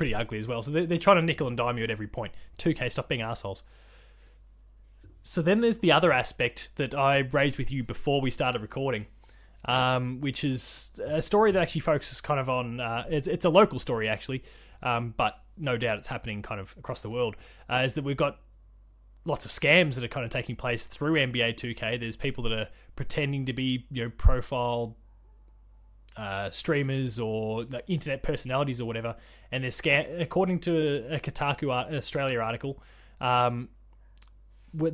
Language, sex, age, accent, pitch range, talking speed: English, male, 20-39, Australian, 115-145 Hz, 190 wpm